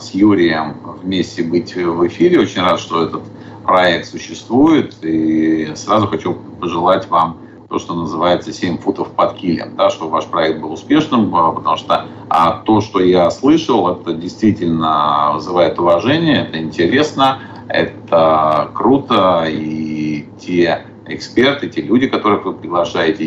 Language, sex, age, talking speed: Russian, male, 40-59, 135 wpm